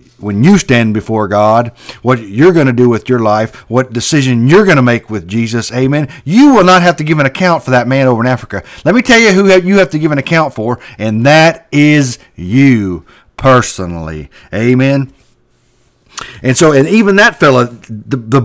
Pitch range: 125-185 Hz